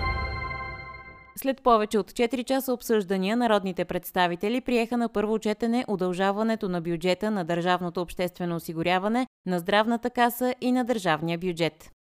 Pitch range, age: 170-225 Hz, 20-39